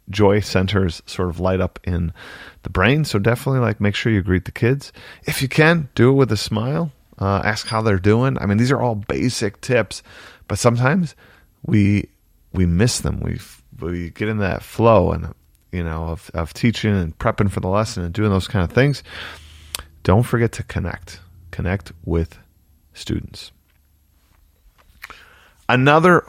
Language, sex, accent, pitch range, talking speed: English, male, American, 90-115 Hz, 170 wpm